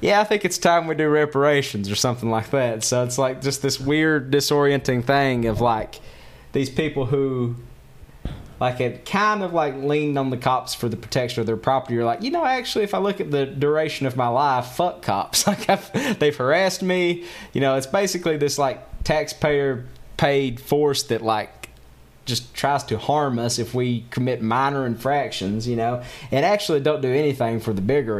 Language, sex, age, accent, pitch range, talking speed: English, male, 20-39, American, 115-145 Hz, 190 wpm